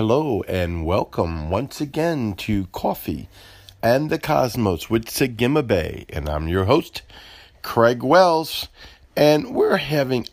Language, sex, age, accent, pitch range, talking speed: English, male, 50-69, American, 100-125 Hz, 130 wpm